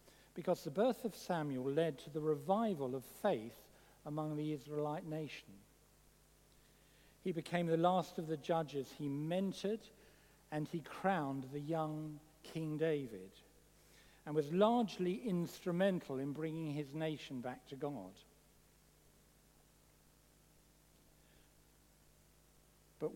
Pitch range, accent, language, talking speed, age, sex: 135-175 Hz, British, English, 110 wpm, 60-79, male